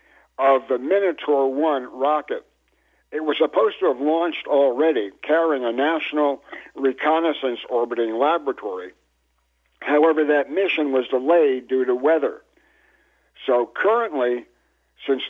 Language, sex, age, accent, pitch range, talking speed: English, male, 60-79, American, 125-160 Hz, 115 wpm